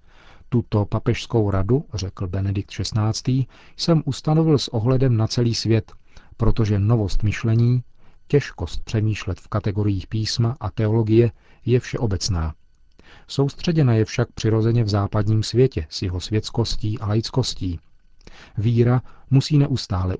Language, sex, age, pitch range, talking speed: Czech, male, 40-59, 100-120 Hz, 120 wpm